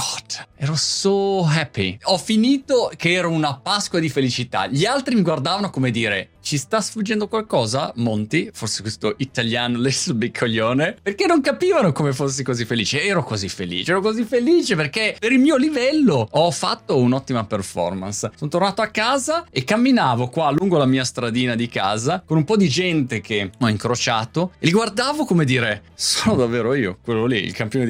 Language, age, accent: Italian, 30-49, native